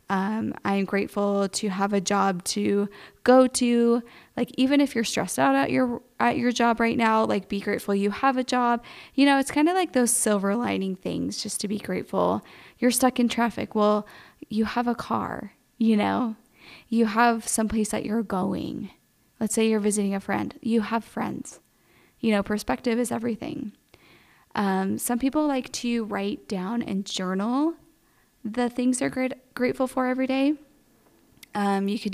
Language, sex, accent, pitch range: English, female, American, 200-245 Hz